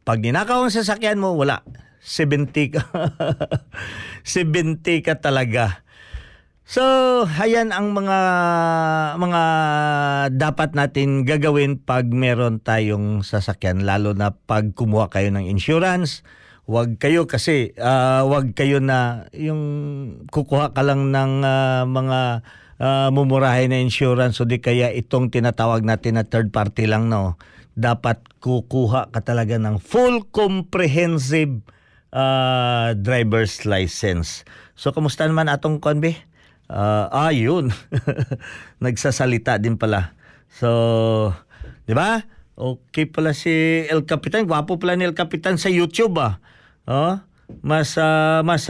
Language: Filipino